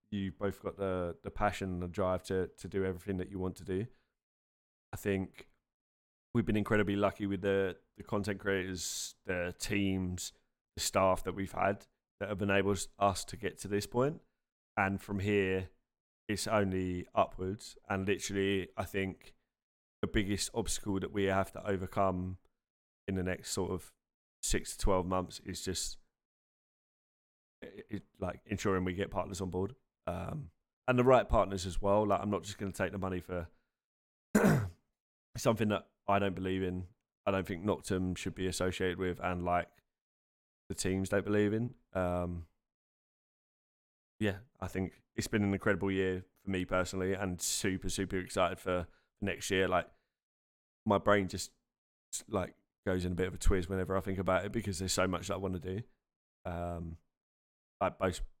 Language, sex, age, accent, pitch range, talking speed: English, male, 20-39, British, 90-100 Hz, 175 wpm